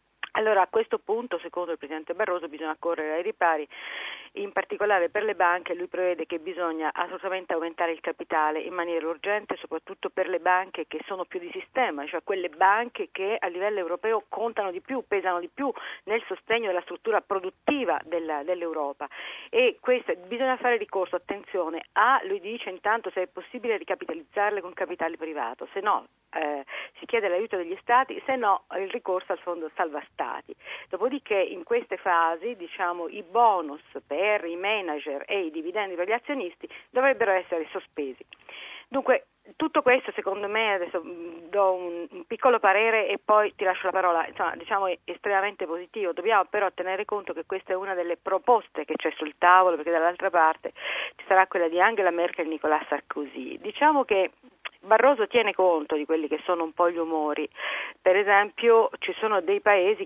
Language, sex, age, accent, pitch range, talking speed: Italian, female, 50-69, native, 170-220 Hz, 175 wpm